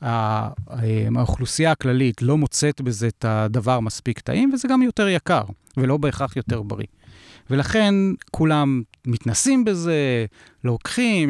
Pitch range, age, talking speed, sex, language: 120-160 Hz, 40-59, 115 wpm, male, Hebrew